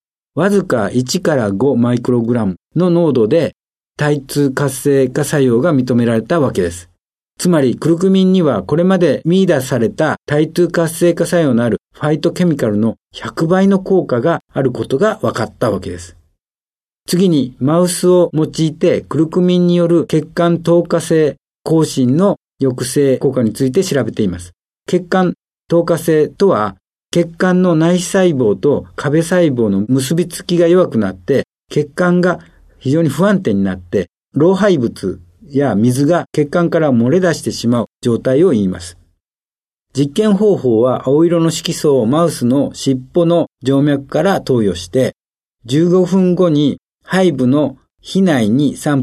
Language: Japanese